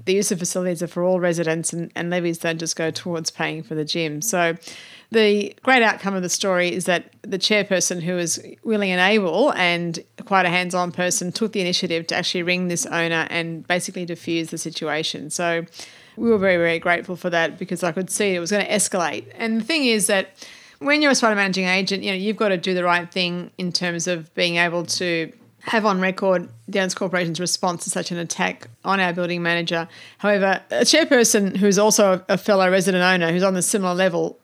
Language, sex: English, female